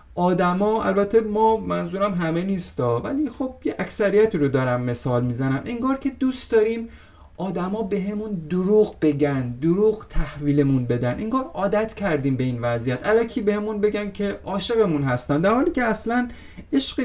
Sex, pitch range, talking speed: male, 130-205 Hz, 155 wpm